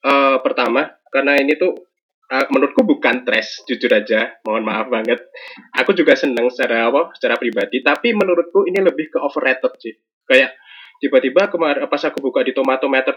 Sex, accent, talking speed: male, native, 170 wpm